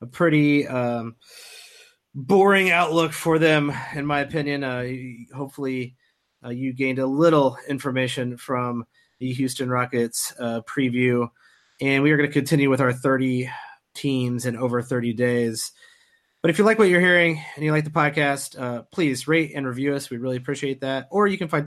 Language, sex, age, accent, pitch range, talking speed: English, male, 30-49, American, 125-160 Hz, 175 wpm